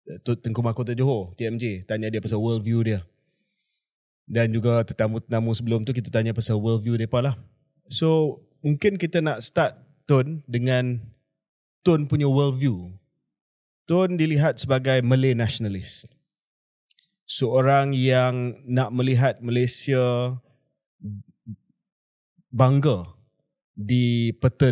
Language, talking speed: Malay, 115 wpm